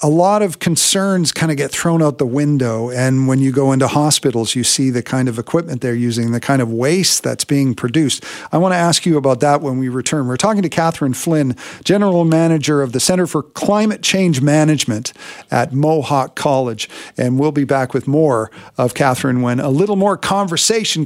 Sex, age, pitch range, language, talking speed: male, 50-69, 130-175 Hz, English, 205 wpm